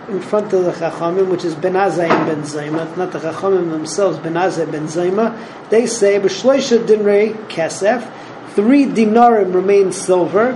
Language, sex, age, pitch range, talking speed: English, male, 40-59, 180-225 Hz, 140 wpm